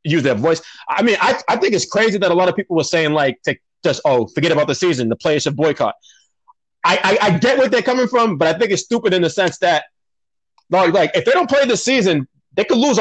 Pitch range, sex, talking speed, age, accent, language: 150-190 Hz, male, 260 wpm, 30-49, American, English